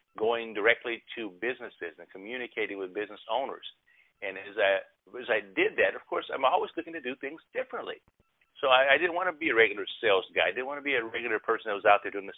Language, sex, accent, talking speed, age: English, male, American, 235 wpm, 50-69